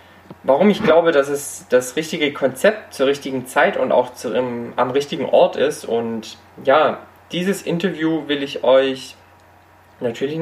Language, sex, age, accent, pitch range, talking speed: German, male, 20-39, German, 105-150 Hz, 145 wpm